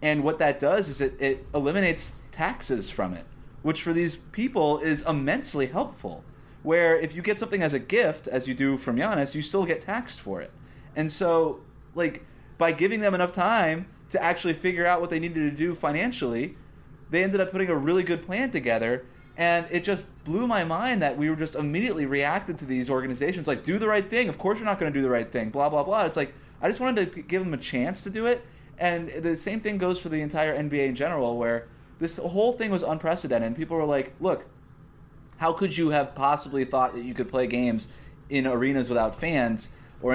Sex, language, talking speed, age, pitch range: male, English, 220 wpm, 20-39, 135-175 Hz